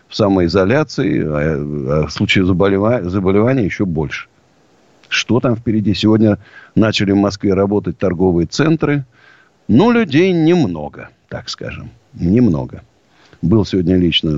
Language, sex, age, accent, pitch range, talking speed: Russian, male, 50-69, native, 90-120 Hz, 115 wpm